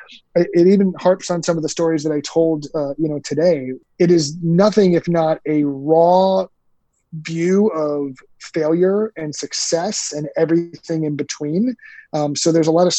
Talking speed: 170 wpm